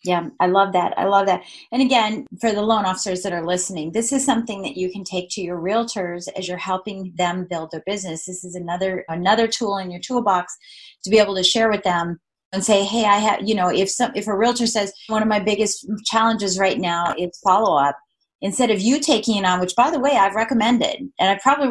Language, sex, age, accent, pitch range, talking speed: English, female, 30-49, American, 185-235 Hz, 235 wpm